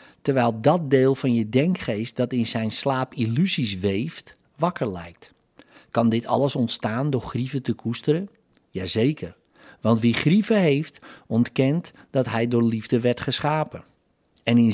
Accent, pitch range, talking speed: Dutch, 115-145 Hz, 145 wpm